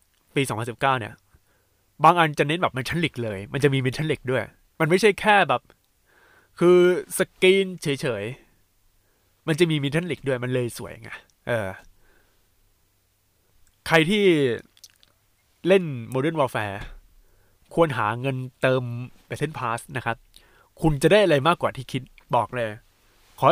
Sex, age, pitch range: male, 20-39, 105-160 Hz